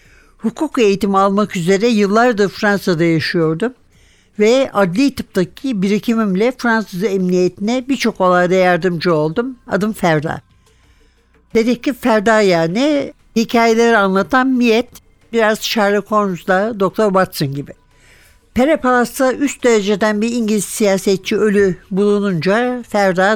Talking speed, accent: 110 wpm, native